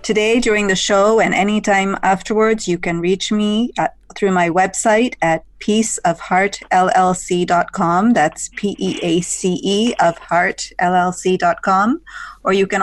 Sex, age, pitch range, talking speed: female, 30-49, 180-215 Hz, 125 wpm